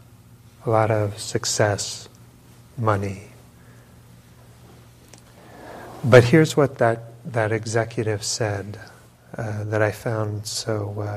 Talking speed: 95 wpm